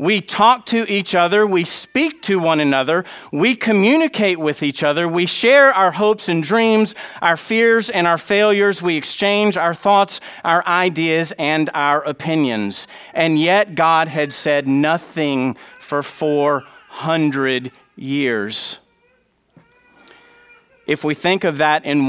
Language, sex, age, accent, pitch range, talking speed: English, male, 40-59, American, 155-210 Hz, 135 wpm